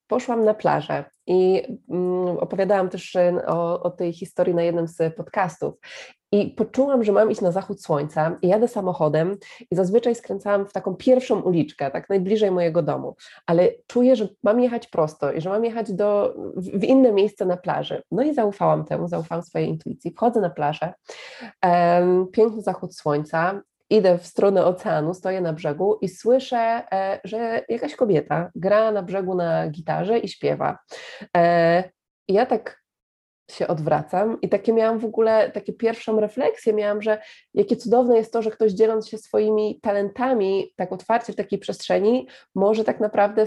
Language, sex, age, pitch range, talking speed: Polish, female, 20-39, 180-220 Hz, 160 wpm